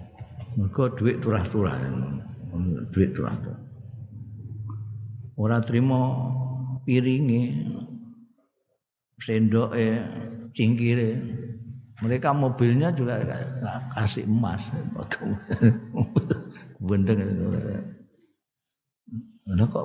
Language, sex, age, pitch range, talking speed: Indonesian, male, 50-69, 100-125 Hz, 65 wpm